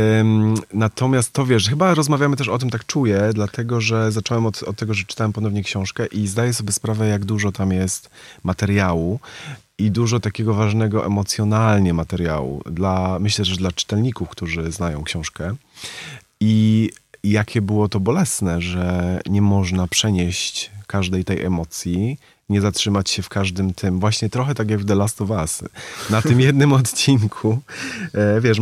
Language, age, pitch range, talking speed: Polish, 30-49, 95-110 Hz, 155 wpm